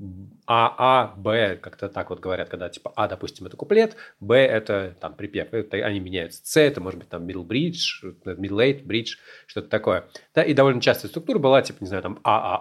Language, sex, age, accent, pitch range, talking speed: Russian, male, 30-49, native, 100-135 Hz, 225 wpm